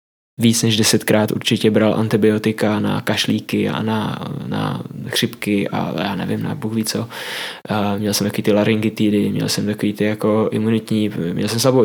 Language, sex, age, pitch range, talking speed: Czech, male, 10-29, 110-115 Hz, 160 wpm